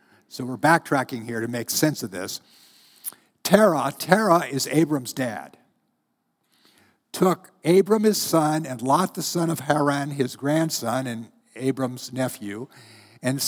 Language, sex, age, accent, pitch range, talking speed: English, male, 60-79, American, 120-160 Hz, 135 wpm